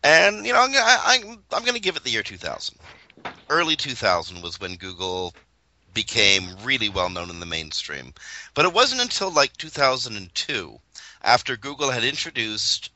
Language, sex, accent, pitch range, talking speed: English, male, American, 90-115 Hz, 150 wpm